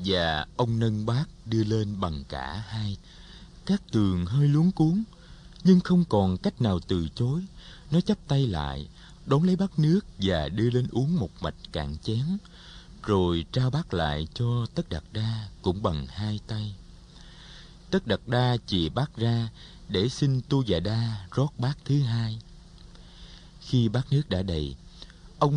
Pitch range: 95-145 Hz